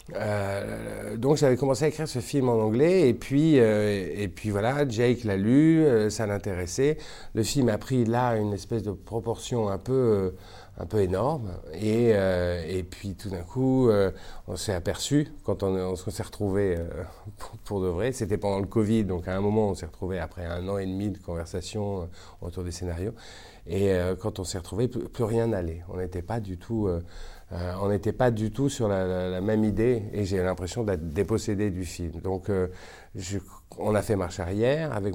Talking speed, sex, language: 200 wpm, male, French